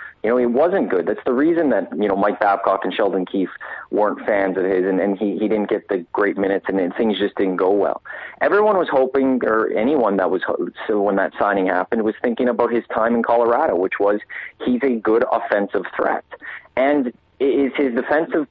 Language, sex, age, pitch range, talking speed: English, male, 30-49, 105-135 Hz, 215 wpm